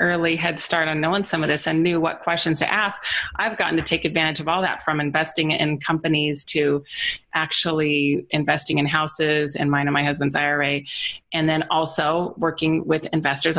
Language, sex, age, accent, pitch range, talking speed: English, female, 30-49, American, 150-170 Hz, 190 wpm